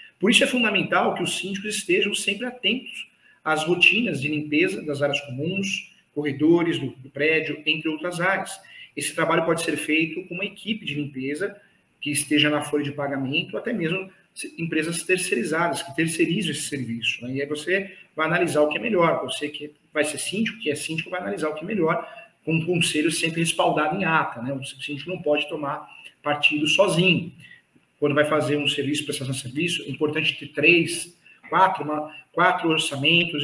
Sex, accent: male, Brazilian